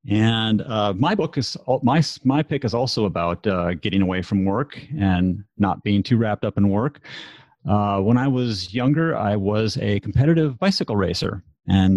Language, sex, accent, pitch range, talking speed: English, male, American, 100-135 Hz, 180 wpm